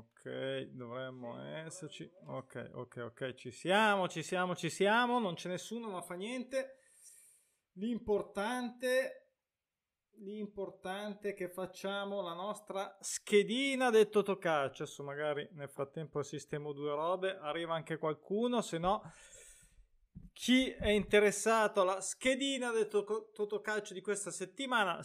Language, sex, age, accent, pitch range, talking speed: Italian, male, 20-39, native, 160-215 Hz, 120 wpm